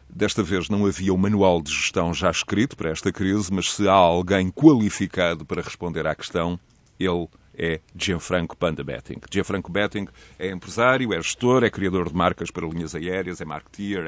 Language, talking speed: Portuguese, 185 wpm